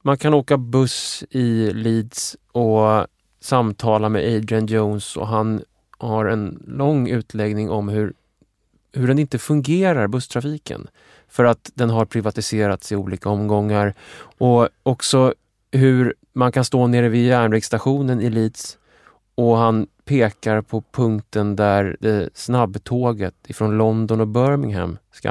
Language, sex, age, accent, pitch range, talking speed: English, male, 20-39, Norwegian, 105-135 Hz, 135 wpm